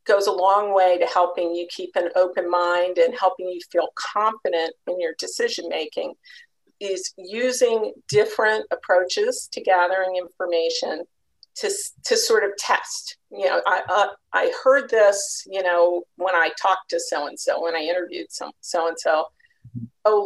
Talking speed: 165 wpm